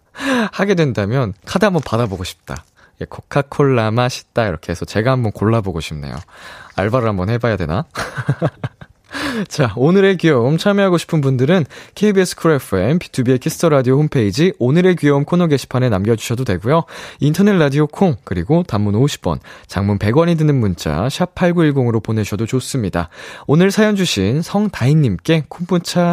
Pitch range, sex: 110-175 Hz, male